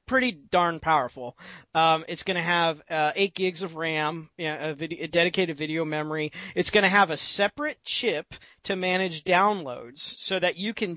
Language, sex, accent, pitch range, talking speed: English, male, American, 155-195 Hz, 175 wpm